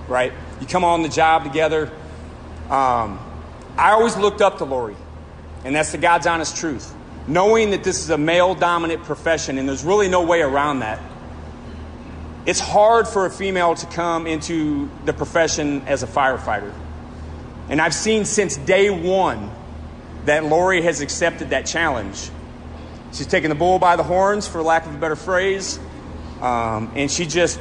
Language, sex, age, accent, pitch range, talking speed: English, male, 30-49, American, 115-170 Hz, 165 wpm